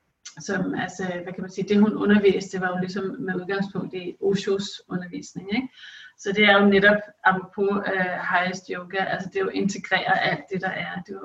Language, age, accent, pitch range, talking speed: Danish, 30-49, native, 185-210 Hz, 205 wpm